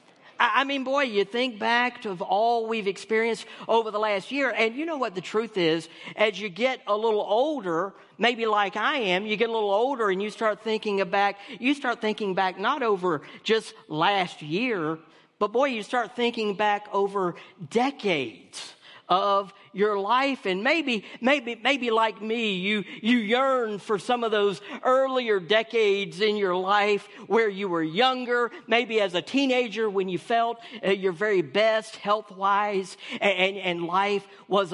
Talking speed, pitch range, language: 175 wpm, 190-225 Hz, English